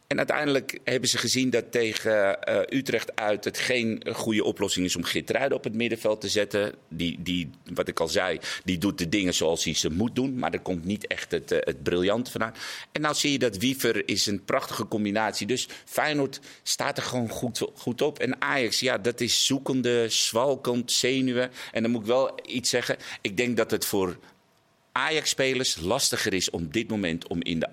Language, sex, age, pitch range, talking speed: Dutch, male, 50-69, 95-125 Hz, 205 wpm